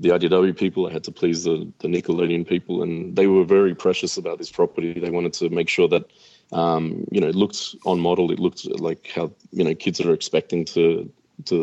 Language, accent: English, Australian